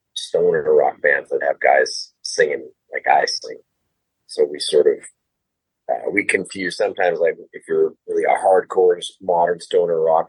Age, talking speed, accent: 30-49, 155 wpm, American